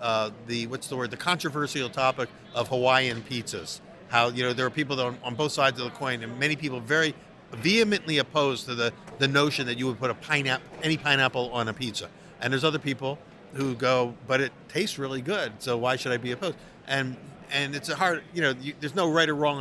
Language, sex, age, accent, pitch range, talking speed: English, male, 50-69, American, 120-150 Hz, 235 wpm